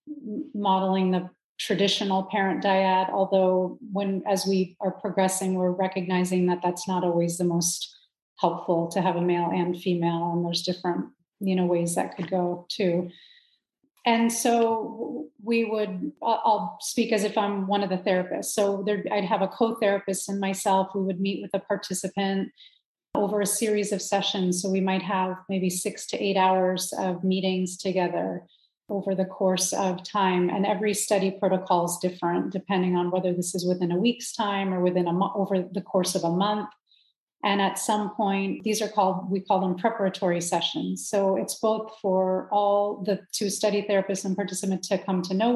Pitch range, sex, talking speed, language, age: 180-205 Hz, female, 180 wpm, English, 30-49